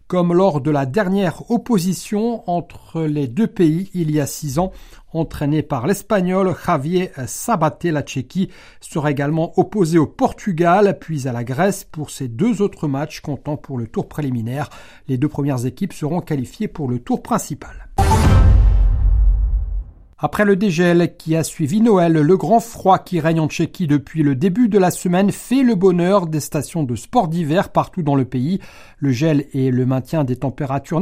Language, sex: French, male